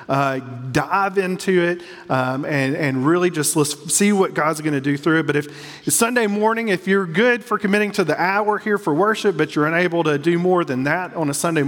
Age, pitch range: 40-59, 140-185 Hz